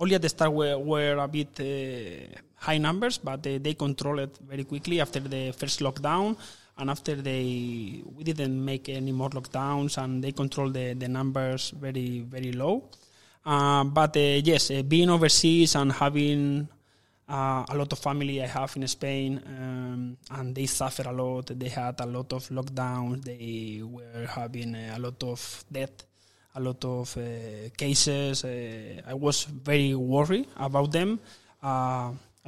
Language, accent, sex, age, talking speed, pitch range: English, Spanish, male, 20-39, 165 wpm, 130-145 Hz